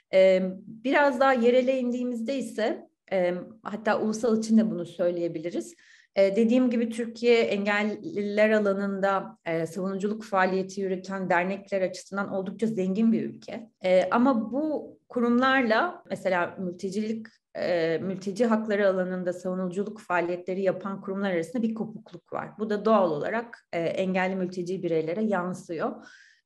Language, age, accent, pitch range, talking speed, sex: Turkish, 30-49, native, 185-225 Hz, 110 wpm, female